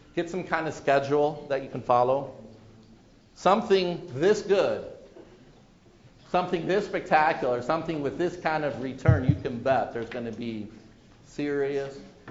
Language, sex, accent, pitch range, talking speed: English, male, American, 110-145 Hz, 140 wpm